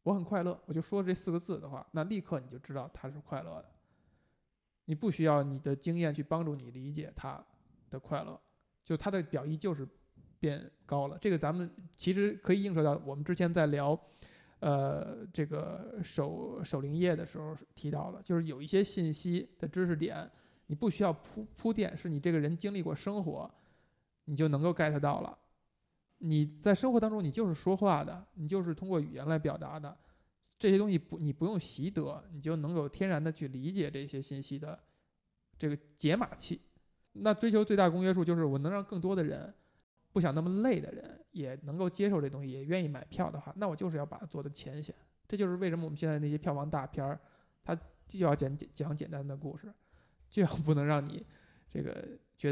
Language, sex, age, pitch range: Chinese, male, 20-39, 145-185 Hz